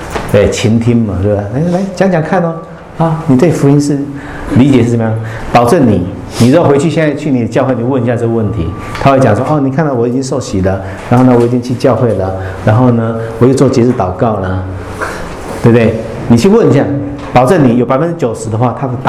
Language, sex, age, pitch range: English, male, 50-69, 110-145 Hz